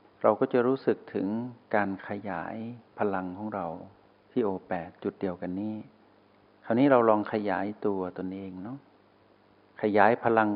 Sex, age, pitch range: male, 60-79, 95-110 Hz